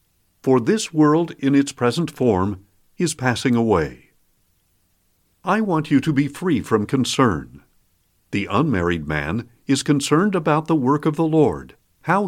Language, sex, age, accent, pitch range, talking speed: English, male, 60-79, American, 105-155 Hz, 145 wpm